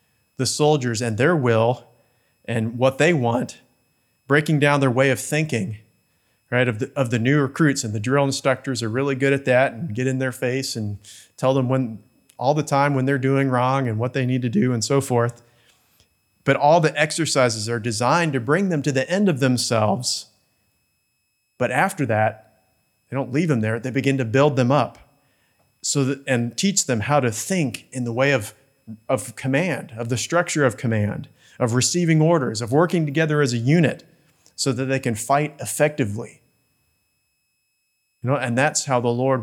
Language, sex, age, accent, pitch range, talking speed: English, male, 30-49, American, 110-135 Hz, 190 wpm